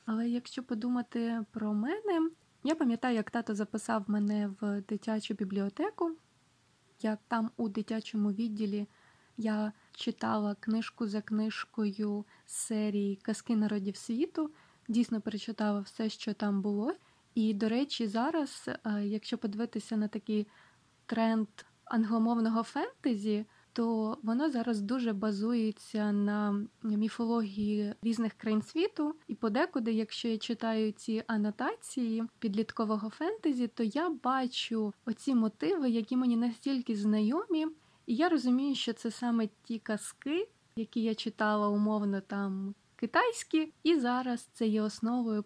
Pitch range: 215-245 Hz